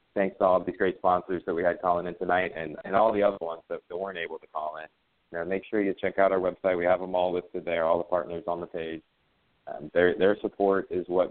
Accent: American